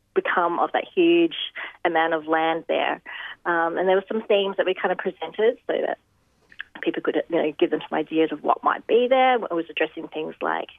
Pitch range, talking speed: 165-205 Hz, 215 wpm